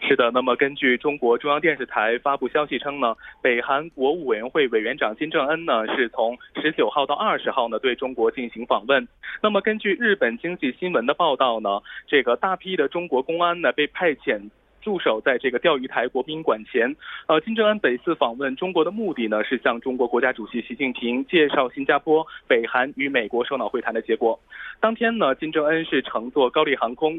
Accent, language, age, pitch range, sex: Chinese, Korean, 20-39, 125-185 Hz, male